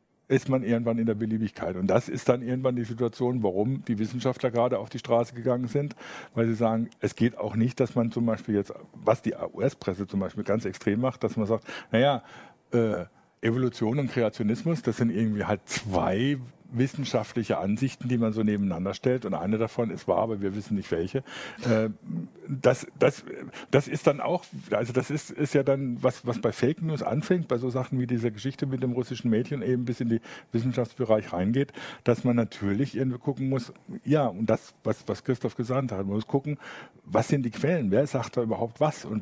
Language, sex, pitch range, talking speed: German, male, 110-130 Hz, 205 wpm